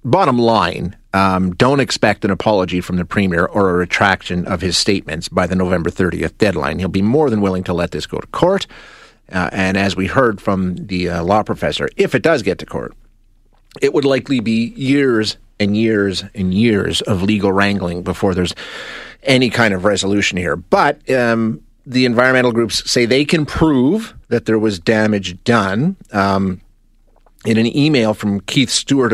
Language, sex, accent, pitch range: English, male, American, 95-115 Hz